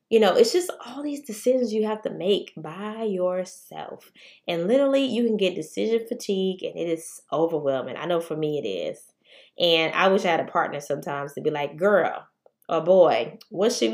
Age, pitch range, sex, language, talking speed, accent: 20-39, 165-215 Hz, female, English, 200 wpm, American